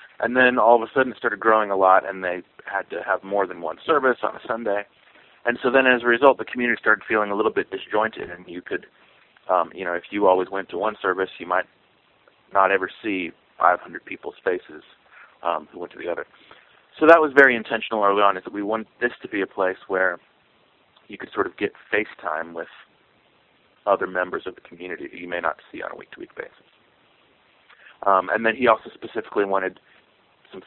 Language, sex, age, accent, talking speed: English, male, 30-49, American, 215 wpm